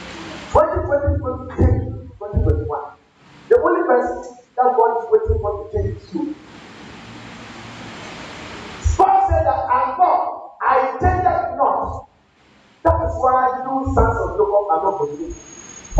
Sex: male